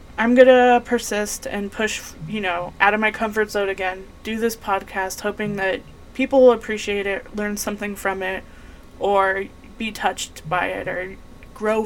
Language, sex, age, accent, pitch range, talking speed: English, female, 20-39, American, 190-220 Hz, 165 wpm